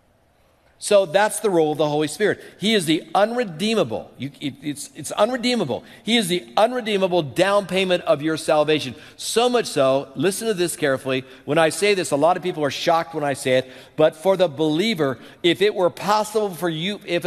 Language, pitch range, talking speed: English, 140-190 Hz, 195 wpm